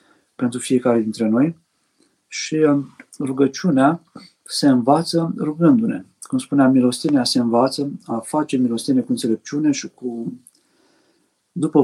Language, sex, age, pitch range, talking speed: Romanian, male, 50-69, 125-165 Hz, 110 wpm